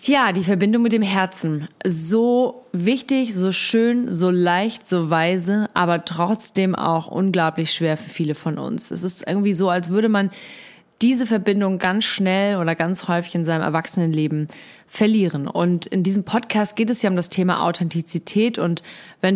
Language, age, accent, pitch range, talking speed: German, 30-49, German, 170-210 Hz, 165 wpm